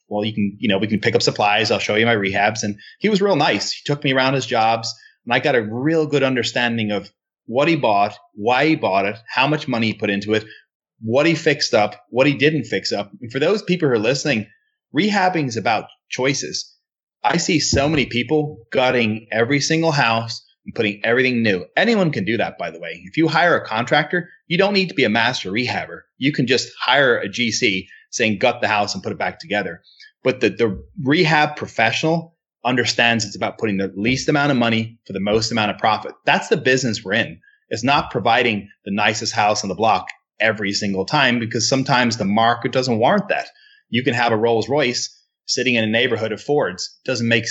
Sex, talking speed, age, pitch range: male, 220 wpm, 30-49, 110-150 Hz